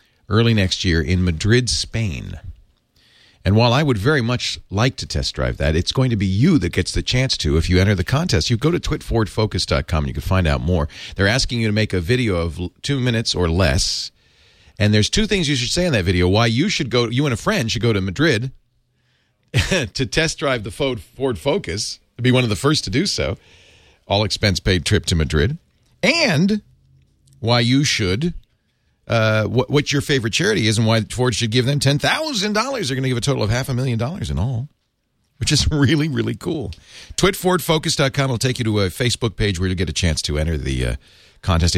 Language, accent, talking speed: English, American, 215 wpm